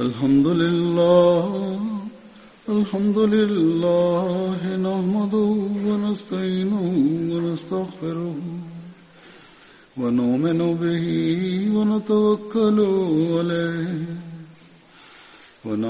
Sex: male